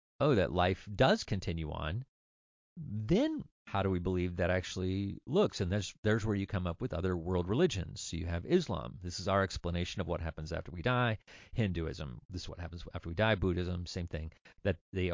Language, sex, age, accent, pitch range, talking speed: English, male, 40-59, American, 85-110 Hz, 210 wpm